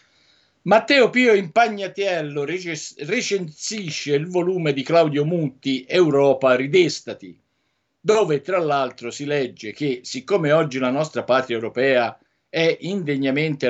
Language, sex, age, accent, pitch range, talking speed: Italian, male, 50-69, native, 125-165 Hz, 115 wpm